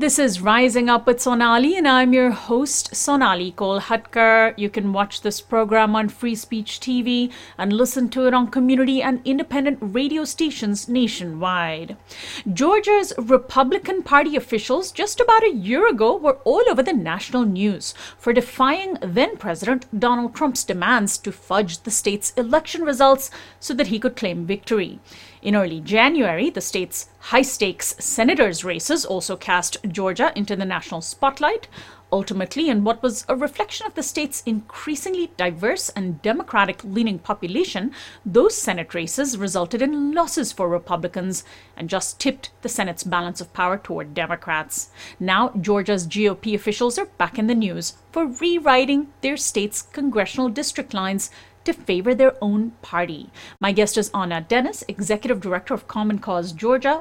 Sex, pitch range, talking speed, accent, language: female, 195-270 Hz, 150 wpm, Indian, English